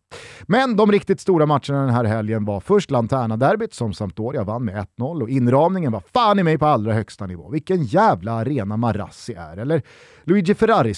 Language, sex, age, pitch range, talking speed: Swedish, male, 30-49, 120-180 Hz, 190 wpm